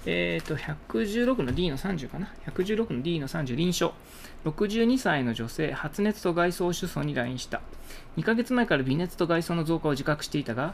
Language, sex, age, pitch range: Japanese, male, 20-39, 135-185 Hz